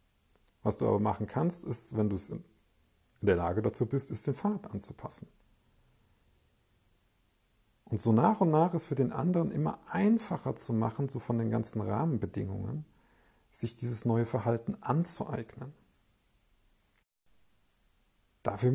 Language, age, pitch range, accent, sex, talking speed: German, 50-69, 105-135 Hz, German, male, 135 wpm